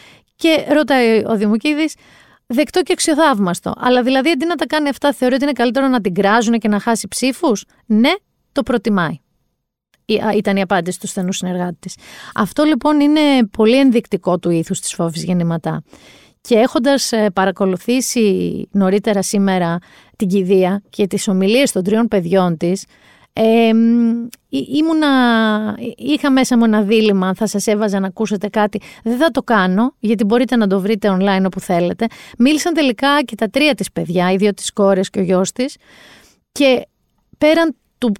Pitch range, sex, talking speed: 200-270 Hz, female, 160 wpm